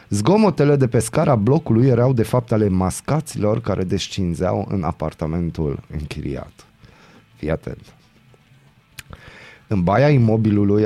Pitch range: 100-130 Hz